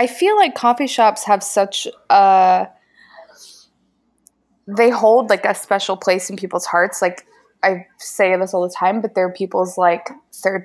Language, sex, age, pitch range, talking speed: English, female, 20-39, 180-230 Hz, 160 wpm